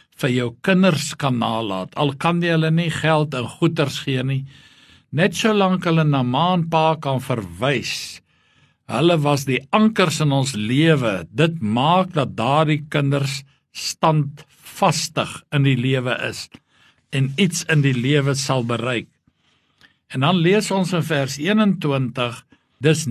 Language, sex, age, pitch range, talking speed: English, male, 60-79, 130-165 Hz, 145 wpm